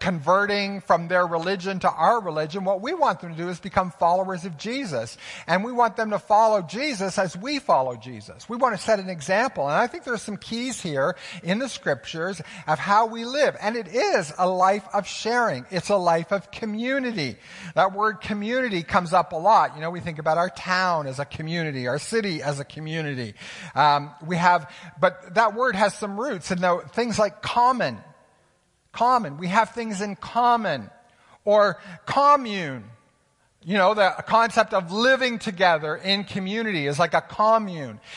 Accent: American